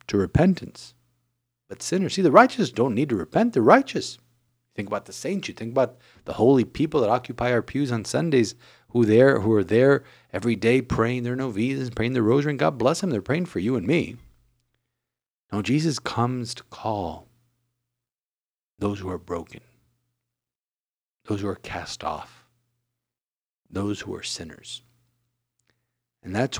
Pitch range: 110-125 Hz